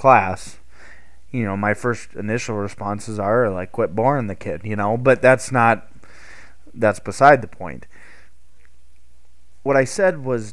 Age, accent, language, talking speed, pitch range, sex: 20-39, American, English, 150 wpm, 95-120 Hz, male